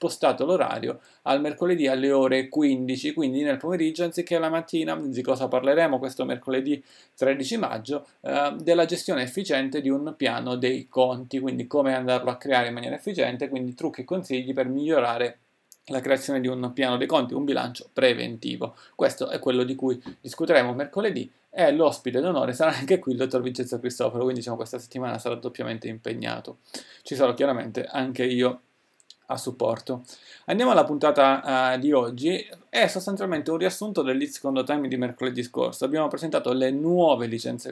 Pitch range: 125-150 Hz